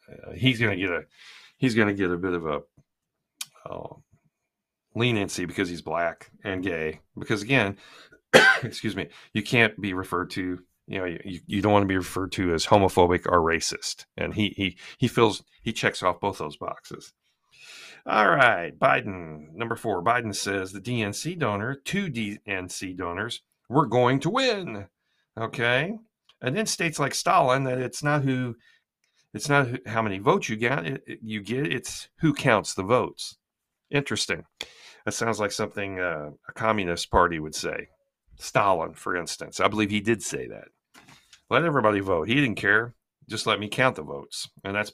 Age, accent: 40-59, American